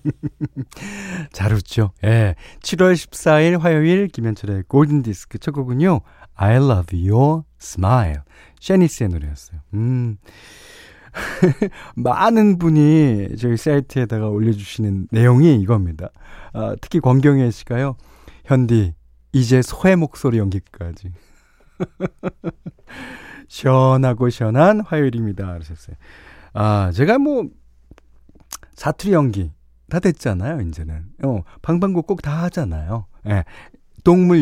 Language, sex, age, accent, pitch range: Korean, male, 40-59, native, 95-145 Hz